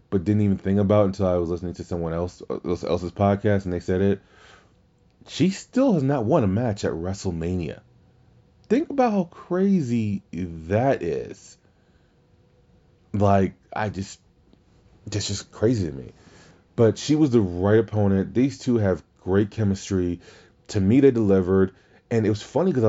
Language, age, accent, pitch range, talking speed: English, 30-49, American, 90-115 Hz, 160 wpm